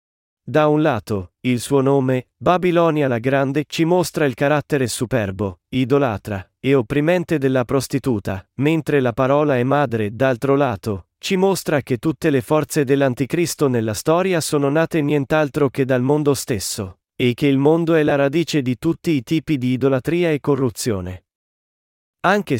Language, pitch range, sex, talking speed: Italian, 125-160 Hz, male, 155 wpm